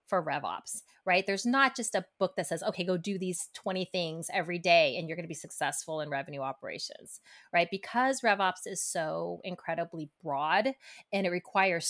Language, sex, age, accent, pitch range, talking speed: English, female, 30-49, American, 175-220 Hz, 180 wpm